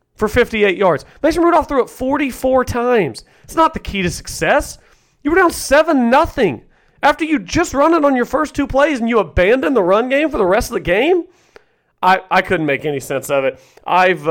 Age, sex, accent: 40-59, male, American